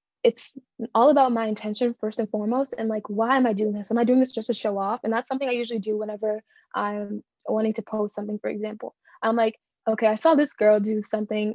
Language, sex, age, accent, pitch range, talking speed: English, female, 10-29, American, 215-245 Hz, 240 wpm